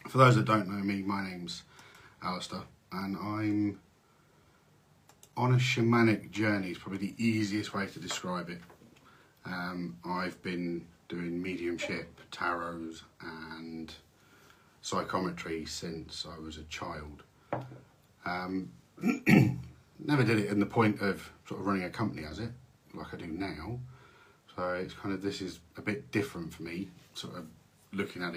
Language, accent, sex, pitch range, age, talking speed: English, British, male, 85-110 Hz, 40-59, 150 wpm